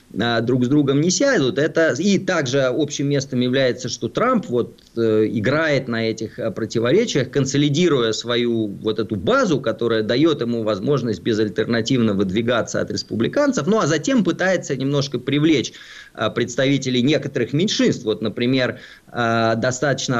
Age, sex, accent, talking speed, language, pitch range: 20-39, male, native, 125 wpm, Russian, 110-145 Hz